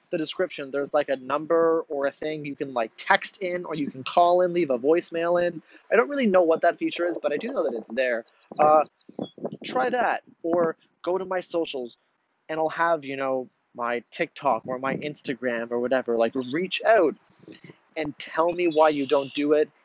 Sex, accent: male, American